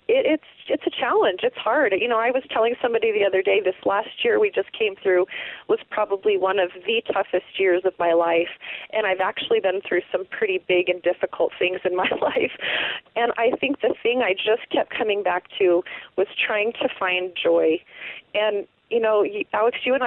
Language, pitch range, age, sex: English, 180-260 Hz, 30-49, female